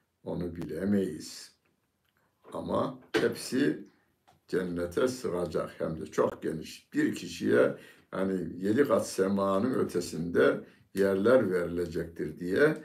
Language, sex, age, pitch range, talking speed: Turkish, male, 60-79, 85-105 Hz, 95 wpm